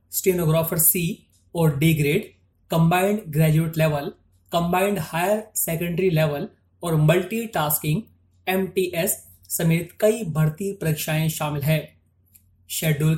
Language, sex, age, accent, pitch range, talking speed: Hindi, male, 30-49, native, 150-190 Hz, 100 wpm